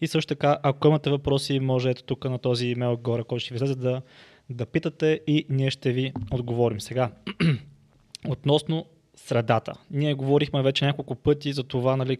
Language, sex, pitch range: Bulgarian, male, 130-145 Hz